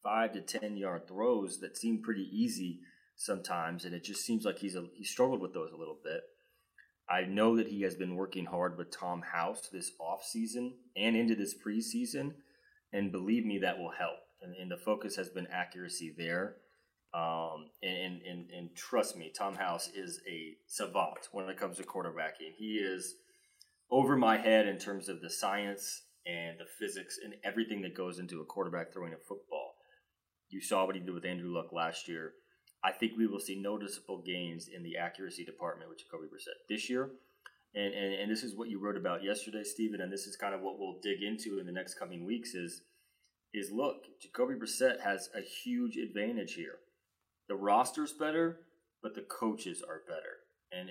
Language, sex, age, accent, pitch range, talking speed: English, male, 30-49, American, 90-115 Hz, 190 wpm